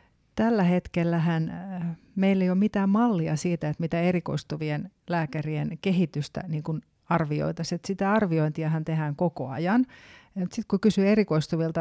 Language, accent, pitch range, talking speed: Finnish, native, 155-180 Hz, 120 wpm